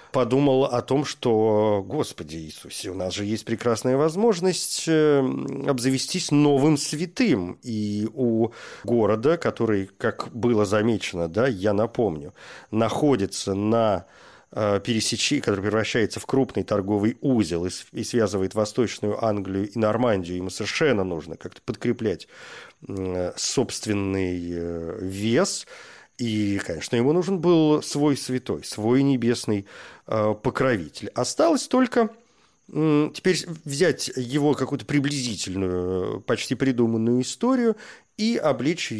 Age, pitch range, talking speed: 40-59, 105-140 Hz, 110 wpm